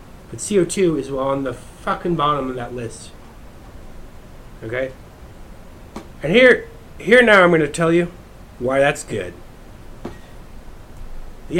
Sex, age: male, 30-49